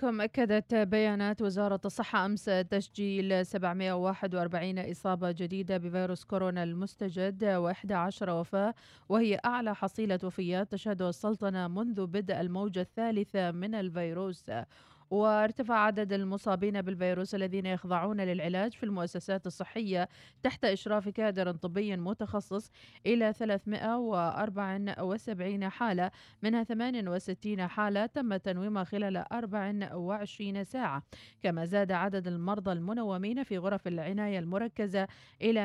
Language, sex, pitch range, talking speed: Arabic, female, 185-215 Hz, 105 wpm